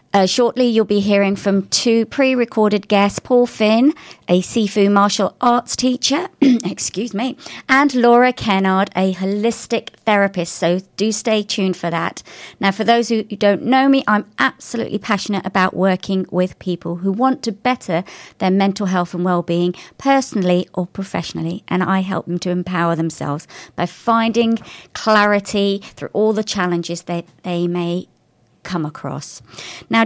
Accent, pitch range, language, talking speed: British, 180-240 Hz, English, 150 wpm